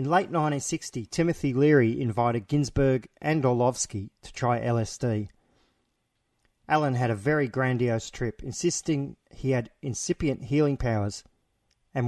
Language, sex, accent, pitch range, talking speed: English, male, Australian, 120-150 Hz, 125 wpm